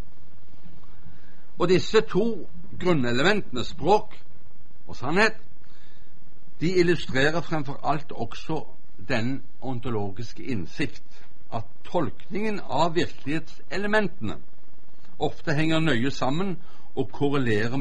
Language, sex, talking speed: Danish, male, 85 wpm